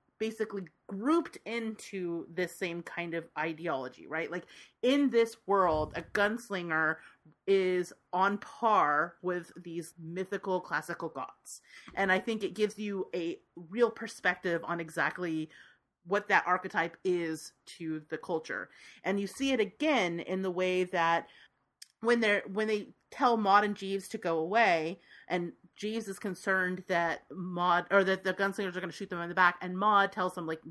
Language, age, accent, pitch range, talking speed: English, 30-49, American, 170-210 Hz, 165 wpm